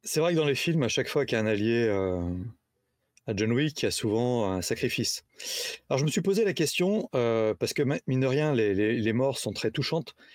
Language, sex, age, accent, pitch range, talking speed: French, male, 30-49, French, 125-175 Hz, 255 wpm